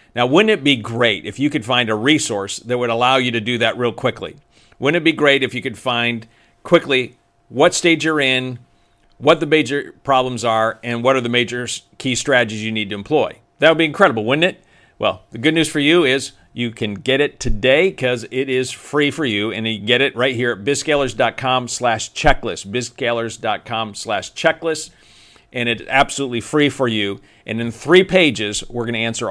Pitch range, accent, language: 110-135 Hz, American, English